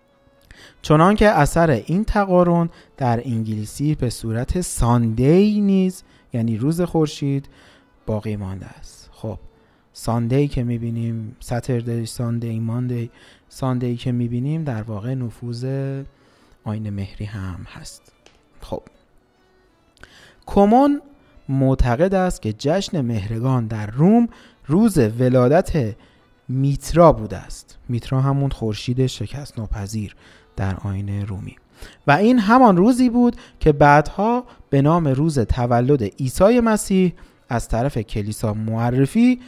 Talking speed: 110 wpm